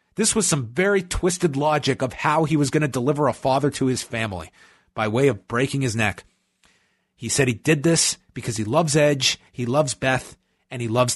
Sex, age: male, 30-49